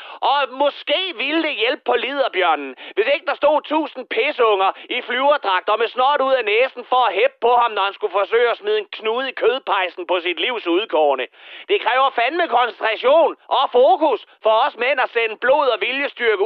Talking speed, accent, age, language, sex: 190 wpm, native, 30-49, Danish, male